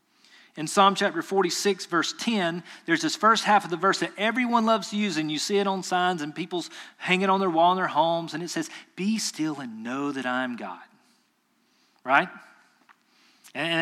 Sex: male